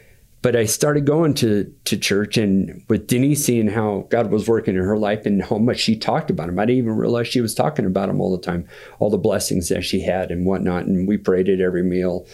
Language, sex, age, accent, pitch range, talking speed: English, male, 50-69, American, 105-125 Hz, 250 wpm